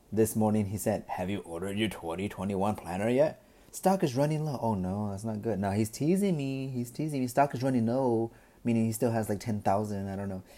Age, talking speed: 30-49, 225 wpm